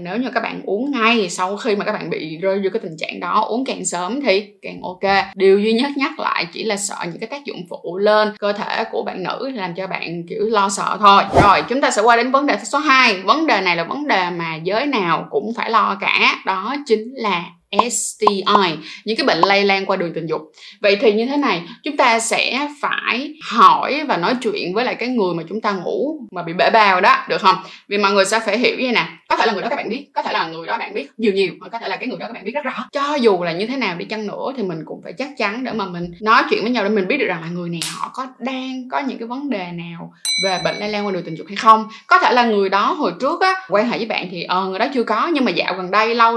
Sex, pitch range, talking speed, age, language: female, 195-235 Hz, 290 wpm, 20-39, Vietnamese